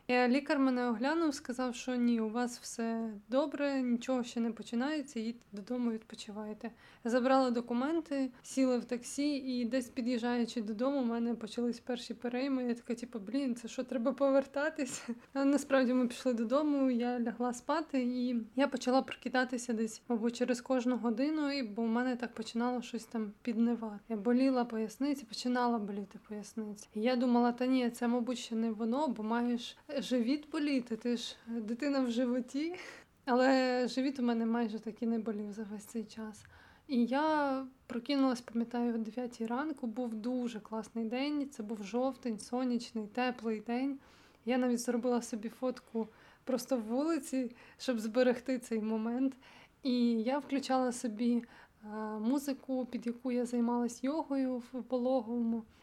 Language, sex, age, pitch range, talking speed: Ukrainian, female, 20-39, 230-260 Hz, 155 wpm